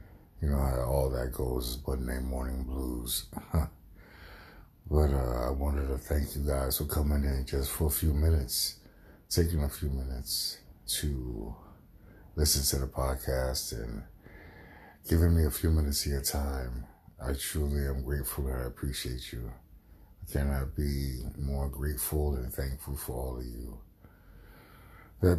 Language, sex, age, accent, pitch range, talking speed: English, male, 60-79, American, 65-80 Hz, 155 wpm